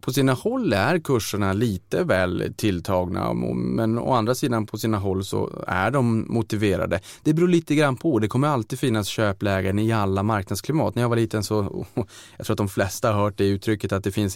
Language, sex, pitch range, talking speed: Swedish, male, 95-115 Hz, 200 wpm